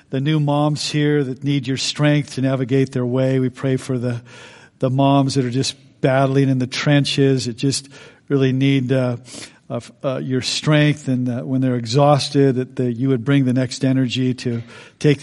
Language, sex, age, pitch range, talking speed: English, male, 50-69, 125-140 Hz, 190 wpm